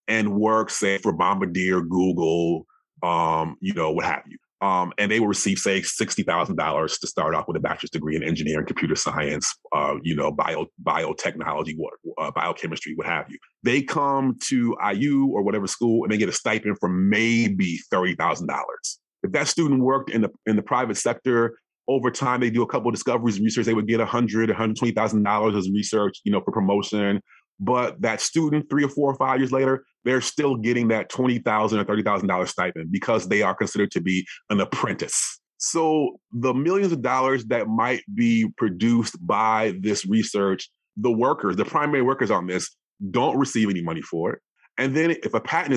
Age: 30-49